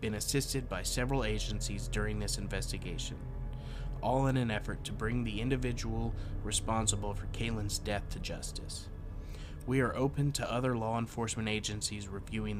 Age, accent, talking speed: 30-49, American, 150 wpm